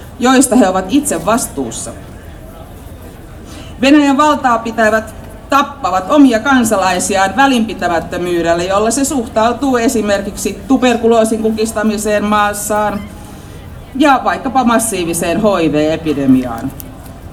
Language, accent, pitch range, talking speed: Finnish, native, 165-250 Hz, 80 wpm